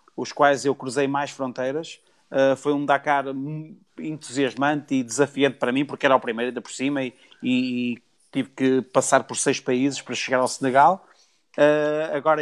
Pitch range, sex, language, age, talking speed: 130-150 Hz, male, Portuguese, 30-49, 165 wpm